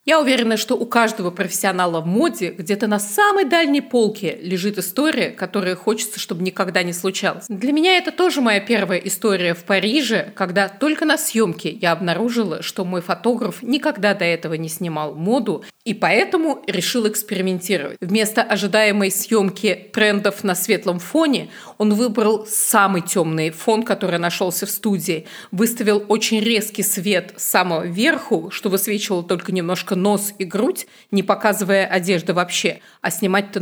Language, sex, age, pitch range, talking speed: Russian, female, 30-49, 185-220 Hz, 150 wpm